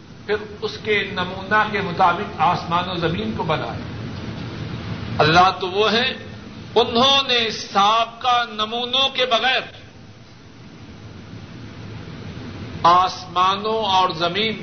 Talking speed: 100 wpm